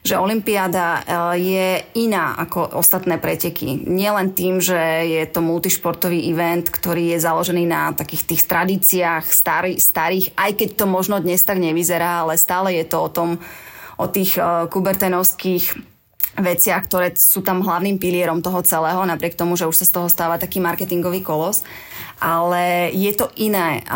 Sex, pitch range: female, 170-185 Hz